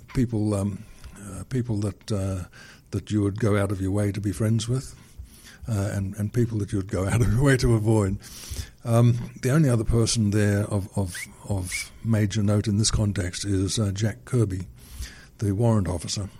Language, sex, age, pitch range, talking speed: English, male, 60-79, 100-115 Hz, 195 wpm